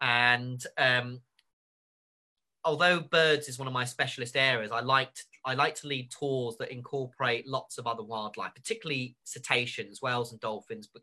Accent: British